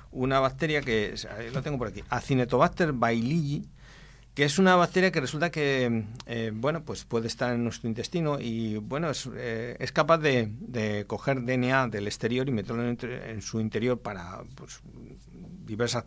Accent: Spanish